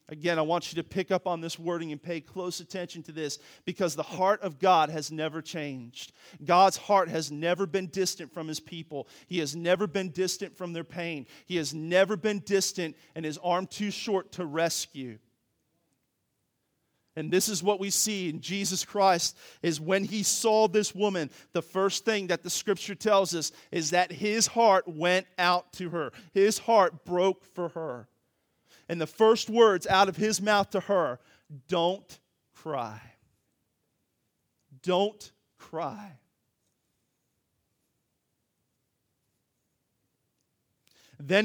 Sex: male